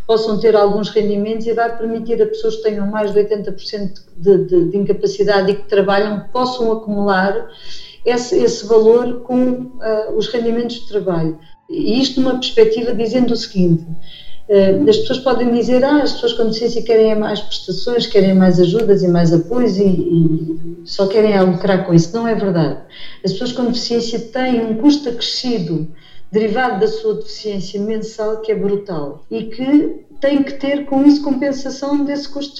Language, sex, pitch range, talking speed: Portuguese, female, 200-245 Hz, 175 wpm